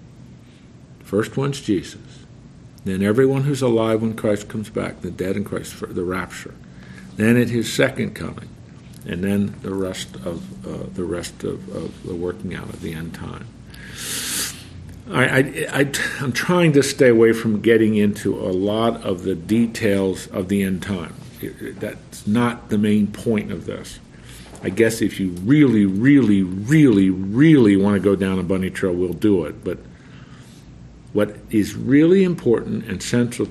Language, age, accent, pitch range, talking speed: English, 50-69, American, 95-115 Hz, 165 wpm